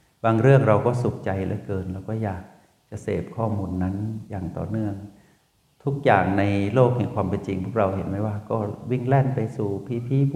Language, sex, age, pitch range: Thai, male, 60-79, 100-120 Hz